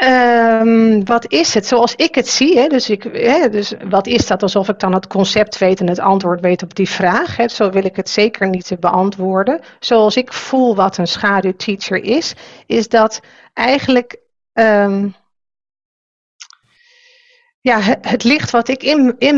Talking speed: 175 wpm